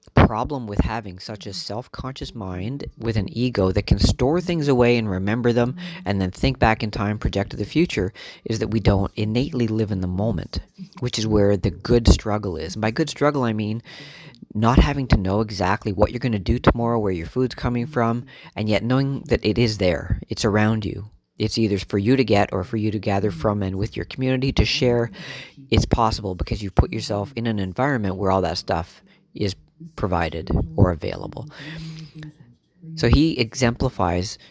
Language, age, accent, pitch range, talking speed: English, 40-59, American, 100-125 Hz, 200 wpm